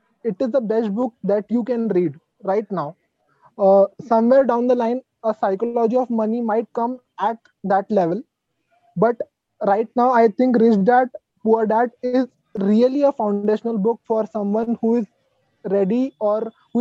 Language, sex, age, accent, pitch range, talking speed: English, male, 20-39, Indian, 205-250 Hz, 165 wpm